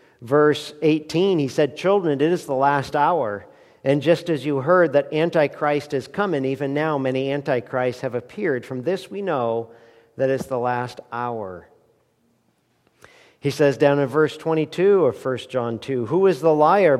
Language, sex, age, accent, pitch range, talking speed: English, male, 50-69, American, 130-165 Hz, 170 wpm